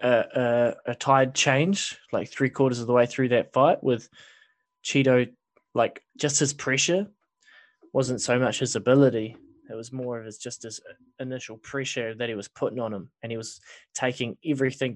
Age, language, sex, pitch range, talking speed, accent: 10-29, English, male, 115-140 Hz, 180 wpm, Australian